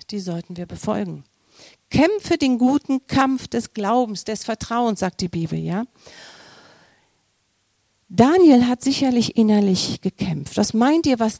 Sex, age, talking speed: female, 50-69, 125 wpm